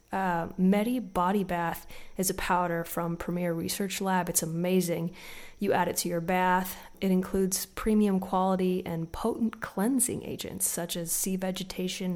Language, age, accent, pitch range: English, 20-39, American, 170-200 Hz